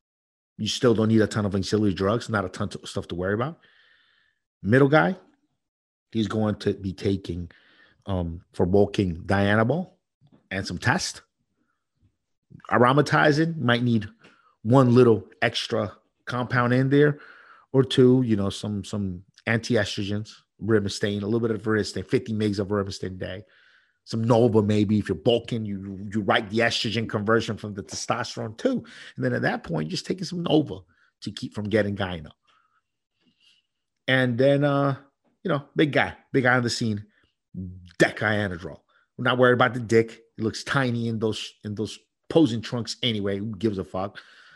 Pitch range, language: 100-120 Hz, English